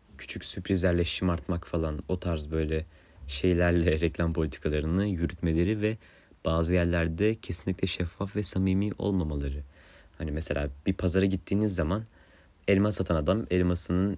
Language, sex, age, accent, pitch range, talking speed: Turkish, male, 30-49, native, 80-95 Hz, 125 wpm